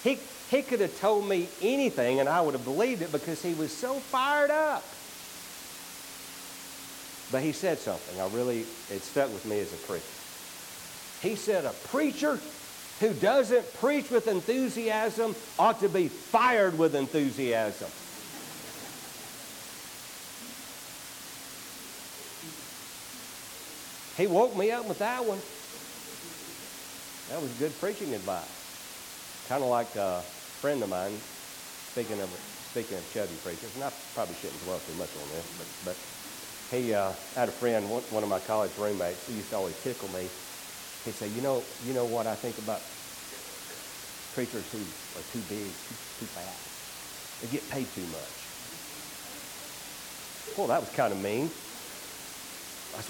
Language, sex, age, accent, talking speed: English, male, 60-79, American, 145 wpm